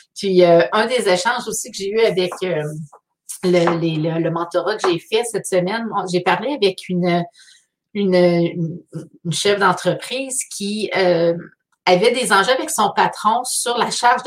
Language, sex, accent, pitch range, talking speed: French, female, Canadian, 175-220 Hz, 170 wpm